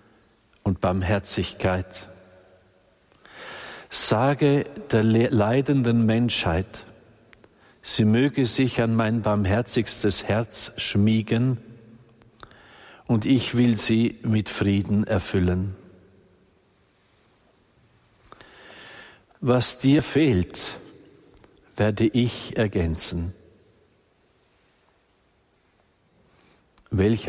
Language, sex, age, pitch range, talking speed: German, male, 50-69, 95-115 Hz, 60 wpm